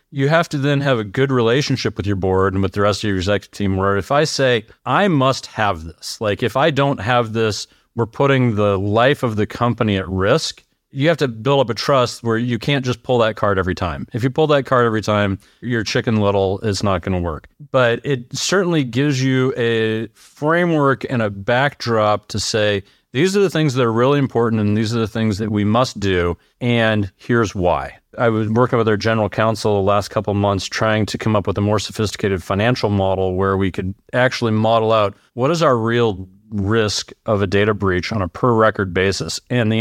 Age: 30-49